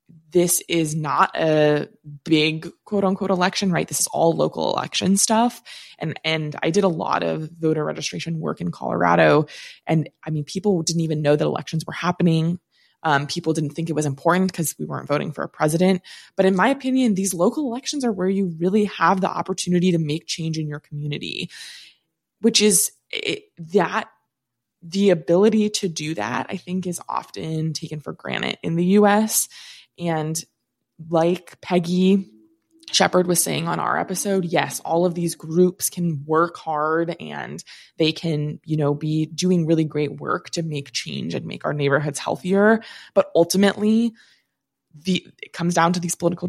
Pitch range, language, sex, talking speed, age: 155-190 Hz, English, female, 175 wpm, 20-39